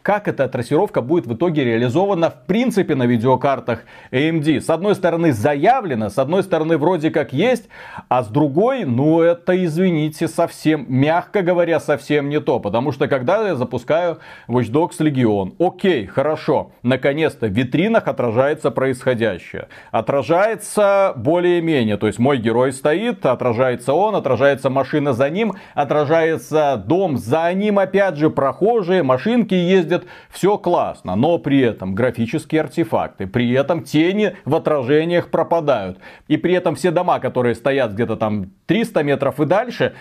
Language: Russian